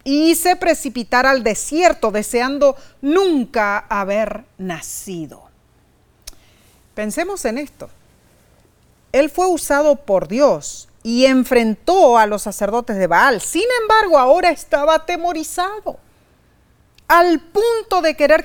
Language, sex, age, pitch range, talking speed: Spanish, female, 40-59, 210-300 Hz, 105 wpm